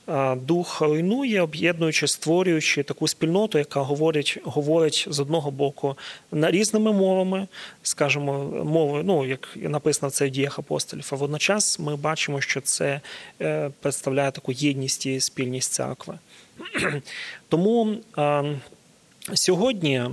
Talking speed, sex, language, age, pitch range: 110 wpm, male, Ukrainian, 30-49, 140-175 Hz